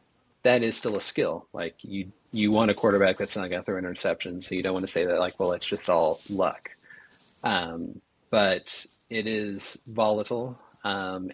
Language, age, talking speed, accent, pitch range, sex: English, 30-49, 185 wpm, American, 95-105 Hz, male